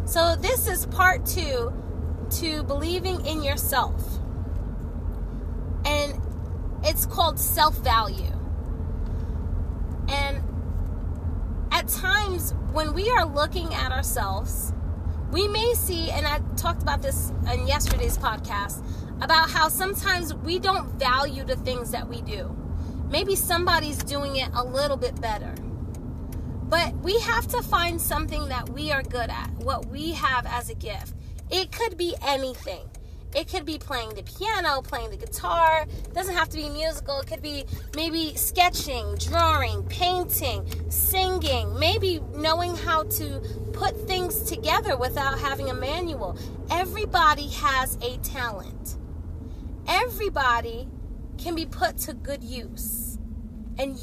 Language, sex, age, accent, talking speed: English, female, 20-39, American, 130 wpm